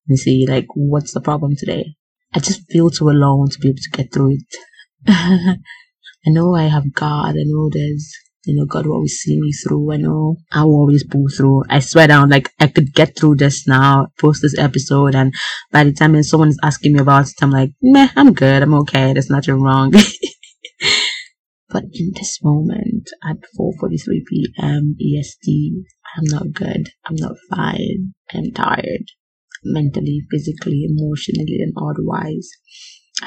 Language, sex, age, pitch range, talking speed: English, female, 20-39, 140-170 Hz, 175 wpm